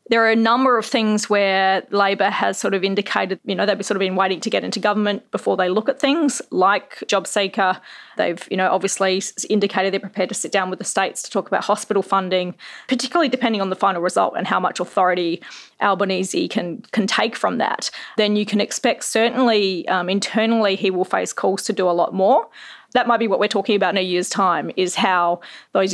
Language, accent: English, Australian